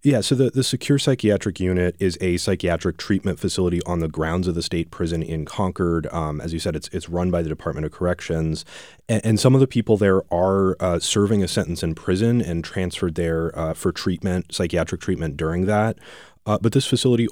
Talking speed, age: 210 wpm, 30-49